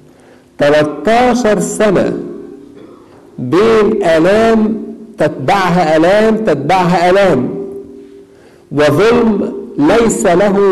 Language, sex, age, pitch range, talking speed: Arabic, male, 50-69, 135-190 Hz, 60 wpm